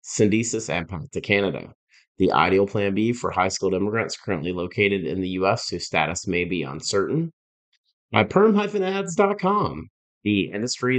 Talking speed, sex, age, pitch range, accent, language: 145 wpm, male, 30-49, 85-125 Hz, American, English